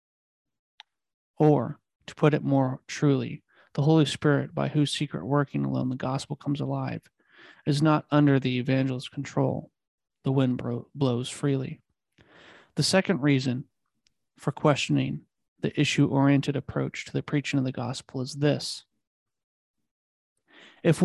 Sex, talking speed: male, 130 wpm